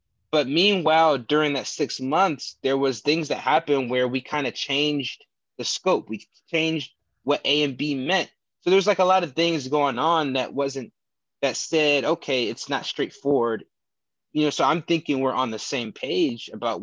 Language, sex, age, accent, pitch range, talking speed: English, male, 20-39, American, 130-160 Hz, 190 wpm